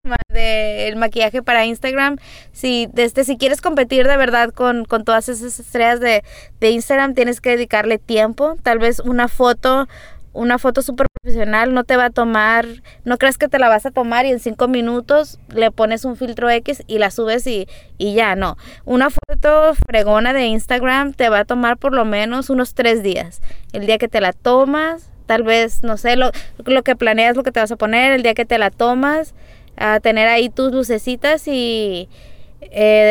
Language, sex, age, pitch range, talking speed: Spanish, female, 20-39, 220-265 Hz, 200 wpm